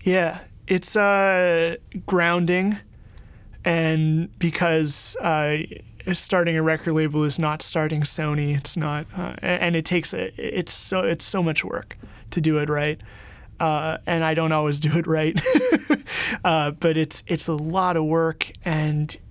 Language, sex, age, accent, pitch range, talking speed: English, male, 30-49, American, 155-180 Hz, 150 wpm